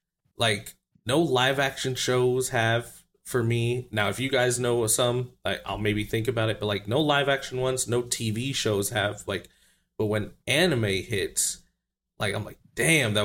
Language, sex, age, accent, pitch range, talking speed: English, male, 30-49, American, 105-130 Hz, 170 wpm